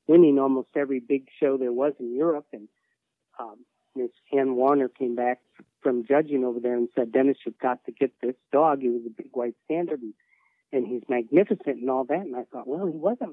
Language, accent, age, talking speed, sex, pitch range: English, American, 50-69, 215 wpm, male, 125-155 Hz